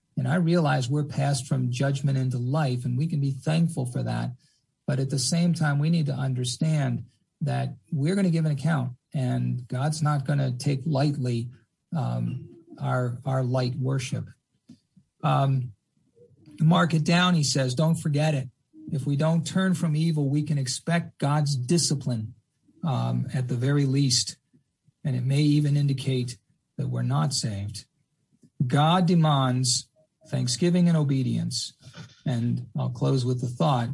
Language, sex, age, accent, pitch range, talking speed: English, male, 50-69, American, 125-155 Hz, 155 wpm